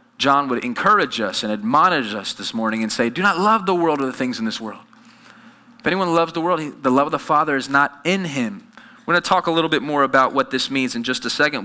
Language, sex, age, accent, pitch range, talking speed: English, male, 20-39, American, 155-230 Hz, 270 wpm